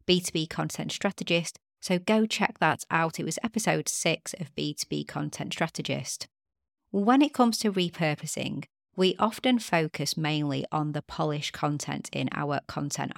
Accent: British